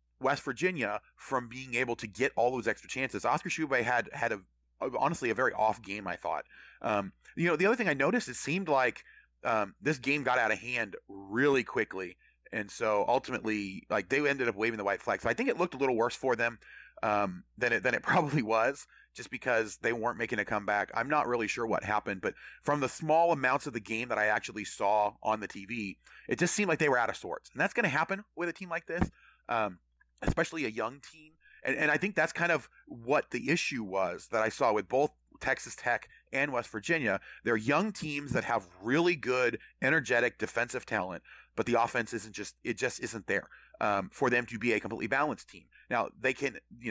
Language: English